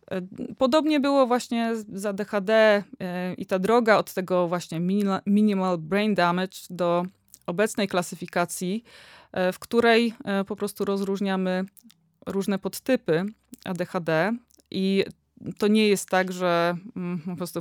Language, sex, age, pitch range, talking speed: Polish, female, 20-39, 175-215 Hz, 115 wpm